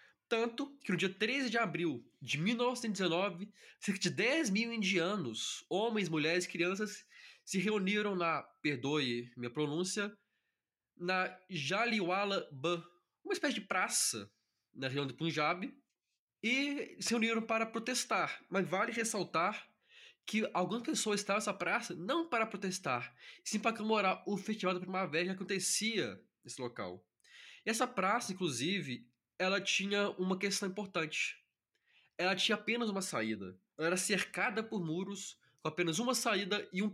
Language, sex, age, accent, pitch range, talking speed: Portuguese, male, 20-39, Brazilian, 165-220 Hz, 140 wpm